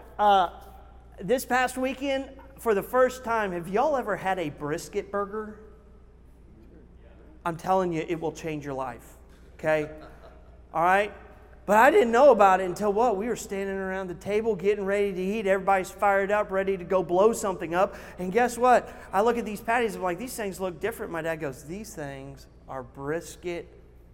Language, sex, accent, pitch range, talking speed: English, male, American, 150-245 Hz, 185 wpm